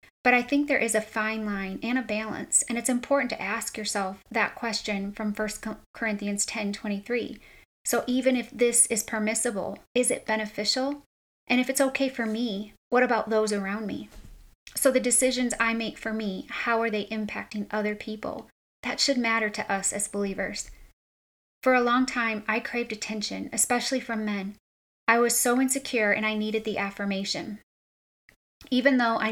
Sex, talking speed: female, 175 wpm